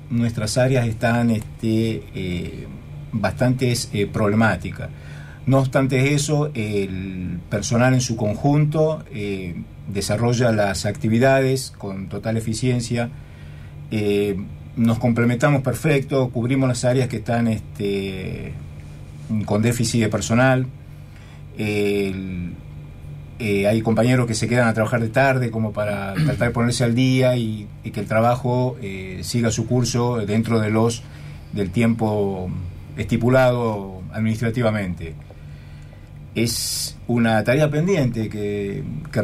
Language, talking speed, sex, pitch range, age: Spanish, 115 wpm, male, 105-125 Hz, 50-69